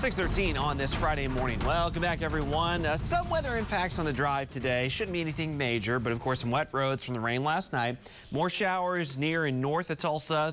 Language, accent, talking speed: English, American, 215 wpm